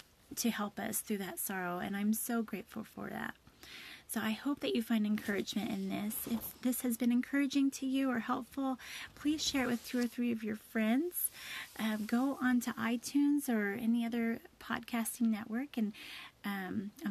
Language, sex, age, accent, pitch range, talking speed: English, female, 30-49, American, 215-255 Hz, 180 wpm